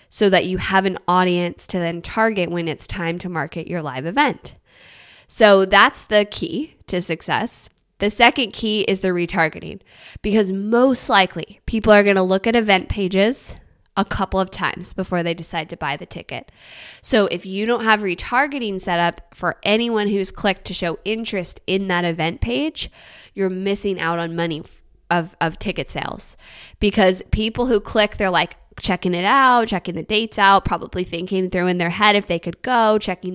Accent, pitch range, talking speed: American, 175-210 Hz, 185 wpm